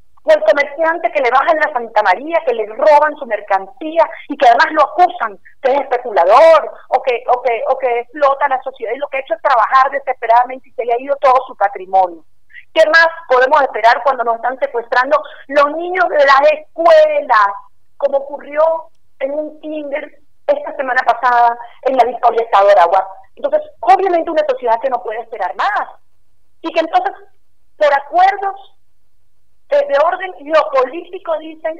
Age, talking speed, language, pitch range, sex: 40-59, 170 wpm, Spanish, 235-310 Hz, female